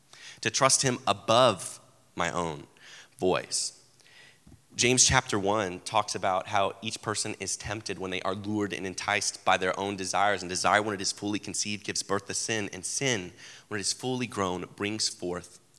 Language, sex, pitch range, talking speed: English, male, 90-115 Hz, 180 wpm